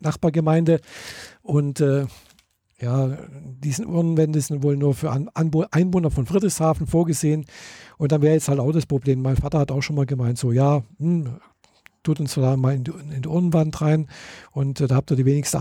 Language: German